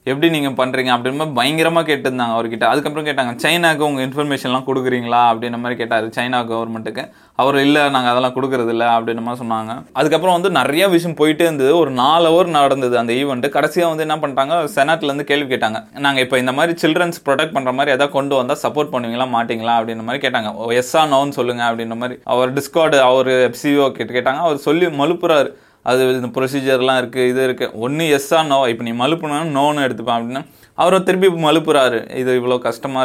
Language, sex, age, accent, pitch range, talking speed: Tamil, male, 20-39, native, 125-150 Hz, 180 wpm